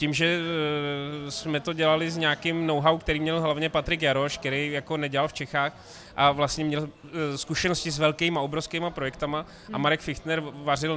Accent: native